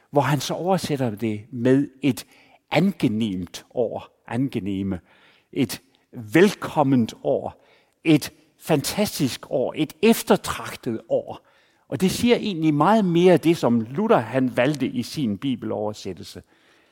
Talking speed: 115 wpm